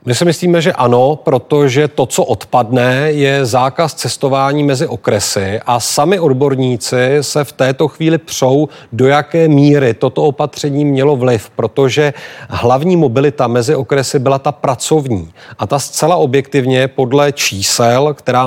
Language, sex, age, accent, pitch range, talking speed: Czech, male, 40-59, native, 125-145 Hz, 145 wpm